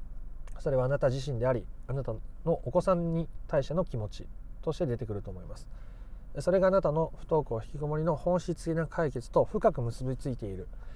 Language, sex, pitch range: Japanese, male, 120-160 Hz